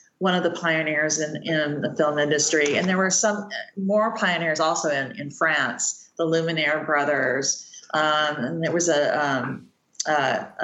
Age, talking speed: 40-59, 165 wpm